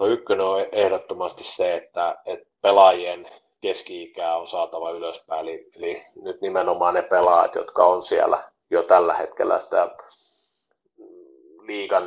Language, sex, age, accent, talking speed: Finnish, male, 30-49, native, 135 wpm